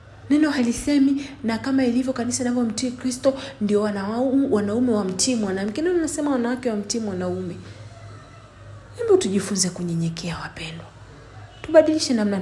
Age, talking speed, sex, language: 30-49, 130 wpm, female, English